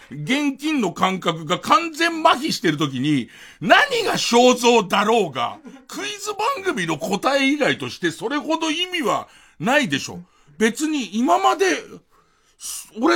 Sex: male